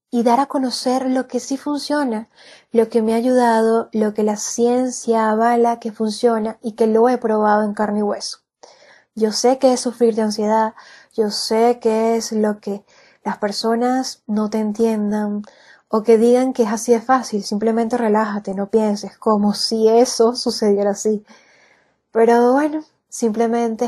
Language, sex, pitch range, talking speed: Spanish, female, 220-260 Hz, 170 wpm